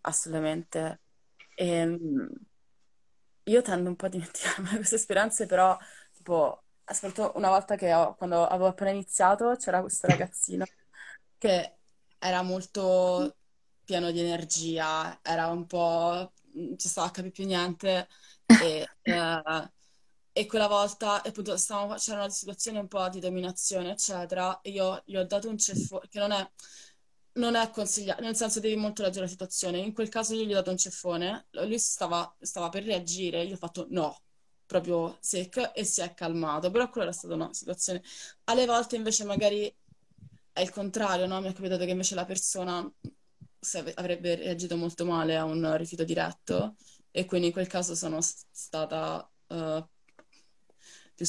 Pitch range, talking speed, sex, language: 170-205 Hz, 160 wpm, female, Italian